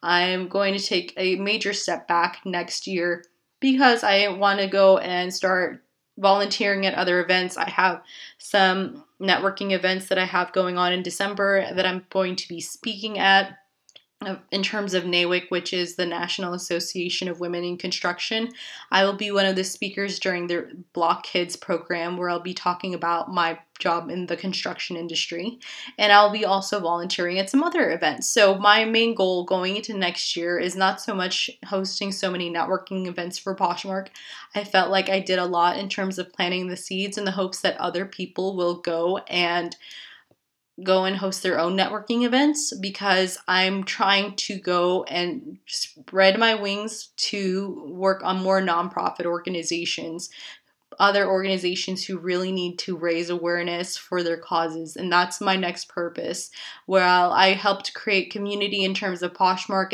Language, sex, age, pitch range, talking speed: English, female, 20-39, 175-195 Hz, 175 wpm